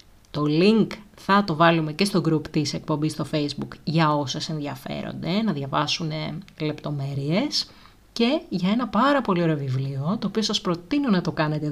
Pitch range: 150-200 Hz